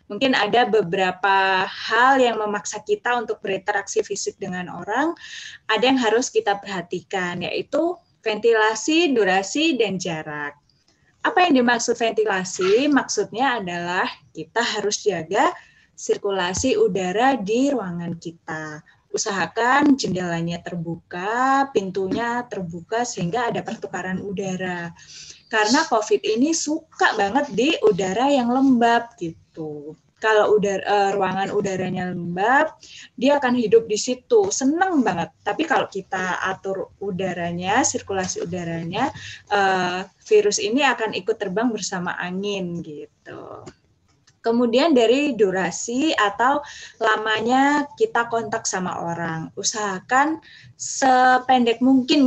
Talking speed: 110 wpm